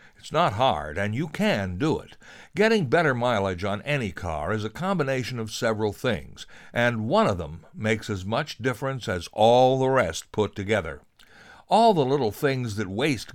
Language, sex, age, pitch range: English, male, 60-79, 105-155 Hz